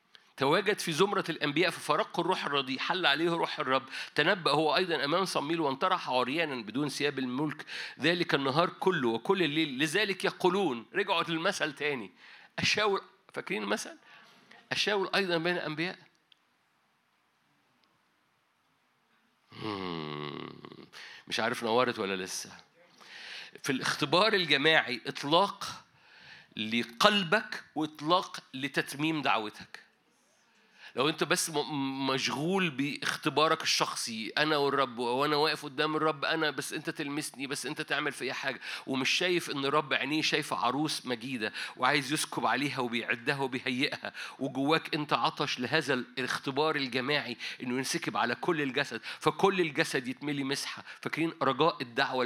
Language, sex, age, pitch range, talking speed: Arabic, male, 50-69, 135-170 Hz, 120 wpm